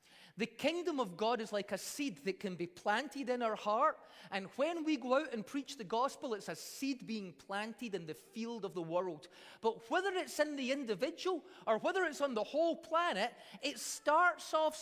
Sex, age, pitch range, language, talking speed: male, 30-49, 220-310 Hz, English, 205 wpm